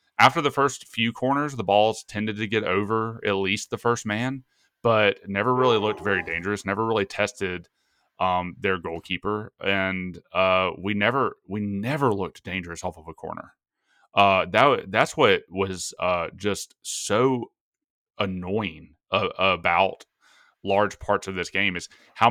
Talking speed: 155 wpm